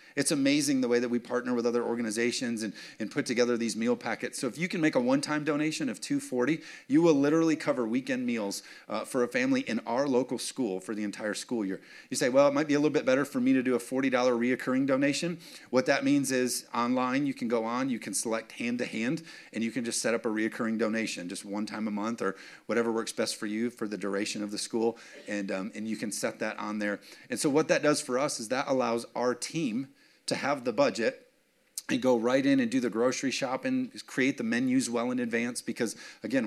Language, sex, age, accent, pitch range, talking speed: English, male, 40-59, American, 115-165 Hz, 245 wpm